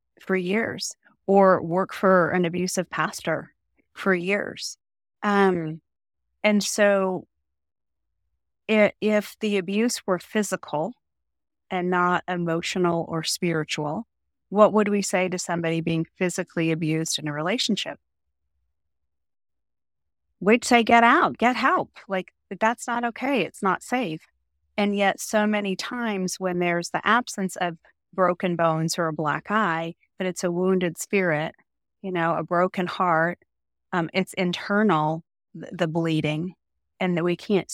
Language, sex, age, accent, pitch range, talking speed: English, female, 30-49, American, 160-195 Hz, 130 wpm